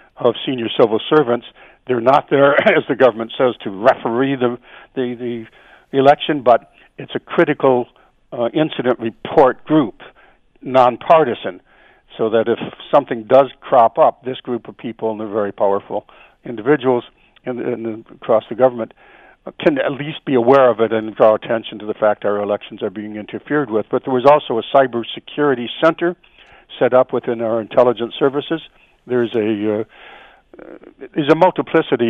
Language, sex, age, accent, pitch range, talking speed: English, male, 60-79, American, 110-130 Hz, 170 wpm